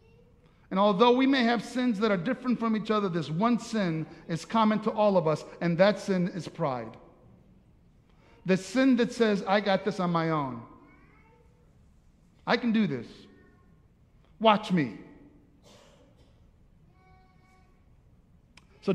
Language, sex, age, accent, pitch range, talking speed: English, male, 50-69, American, 175-230 Hz, 135 wpm